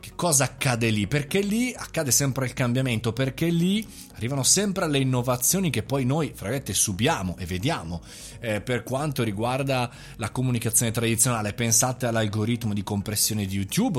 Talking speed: 150 wpm